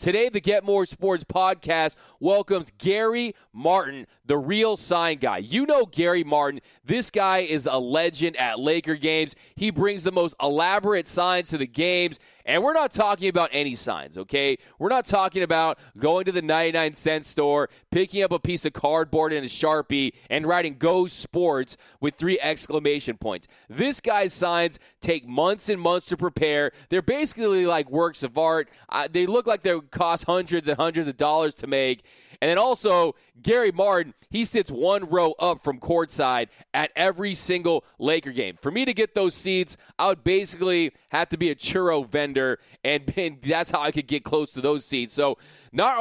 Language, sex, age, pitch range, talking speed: English, male, 20-39, 150-190 Hz, 185 wpm